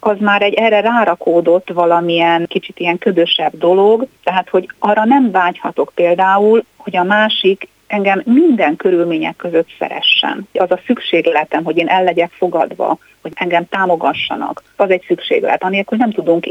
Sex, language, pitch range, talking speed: female, Hungarian, 170-210 Hz, 150 wpm